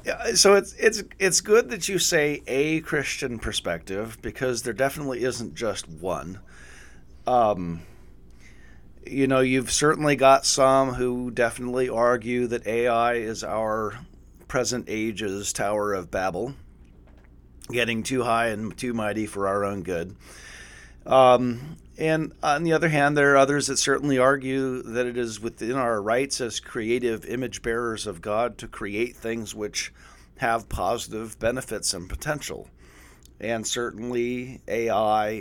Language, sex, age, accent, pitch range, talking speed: English, male, 40-59, American, 90-130 Hz, 140 wpm